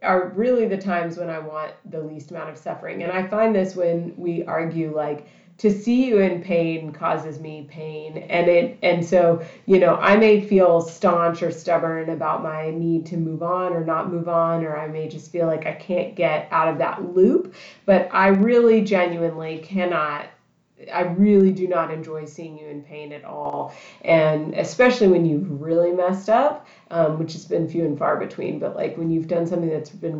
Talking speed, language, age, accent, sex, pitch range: 205 wpm, English, 30-49, American, female, 165-190 Hz